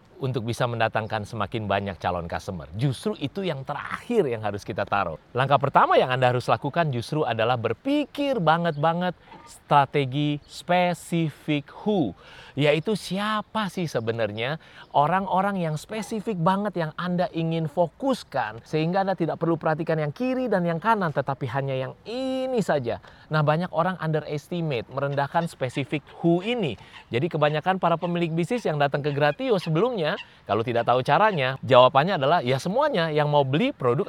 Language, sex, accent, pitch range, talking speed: Indonesian, male, native, 120-180 Hz, 150 wpm